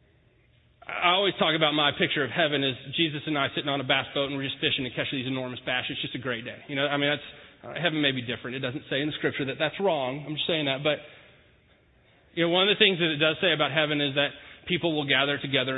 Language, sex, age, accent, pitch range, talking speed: English, male, 30-49, American, 130-170 Hz, 280 wpm